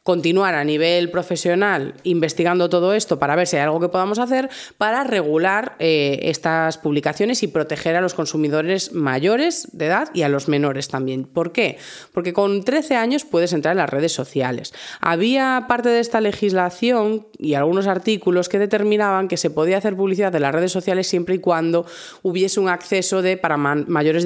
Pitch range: 155-200 Hz